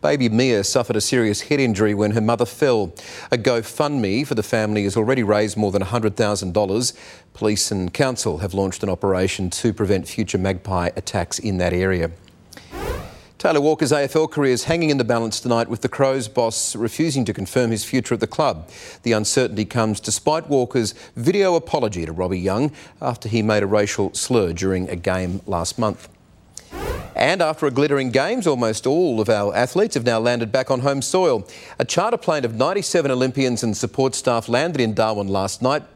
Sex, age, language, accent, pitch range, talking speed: male, 40-59, English, Australian, 100-130 Hz, 185 wpm